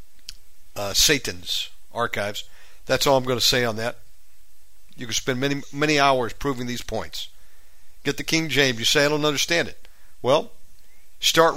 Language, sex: English, male